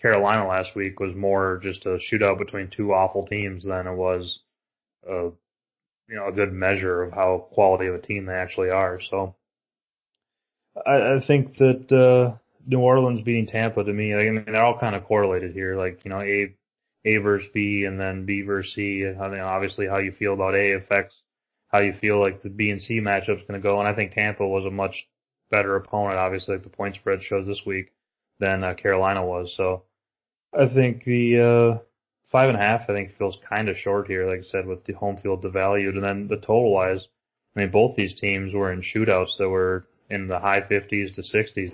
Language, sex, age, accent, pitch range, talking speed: English, male, 20-39, American, 95-105 Hz, 215 wpm